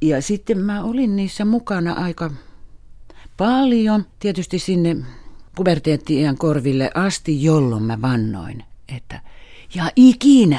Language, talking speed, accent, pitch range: Finnish, 110 wpm, native, 125-180 Hz